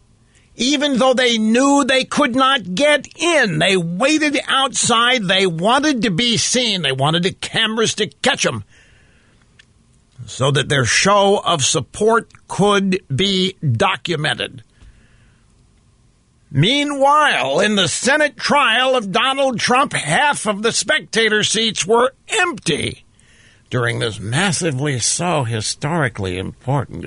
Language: English